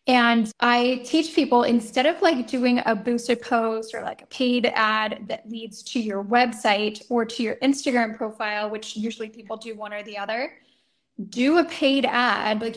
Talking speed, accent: 185 wpm, American